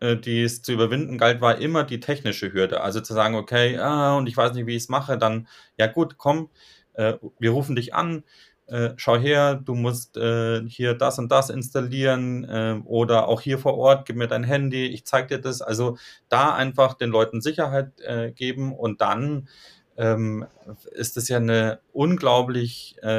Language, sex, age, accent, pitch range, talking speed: German, male, 30-49, German, 115-135 Hz, 190 wpm